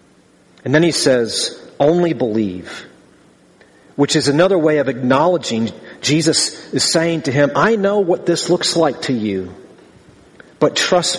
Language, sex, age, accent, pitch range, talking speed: English, male, 40-59, American, 125-165 Hz, 145 wpm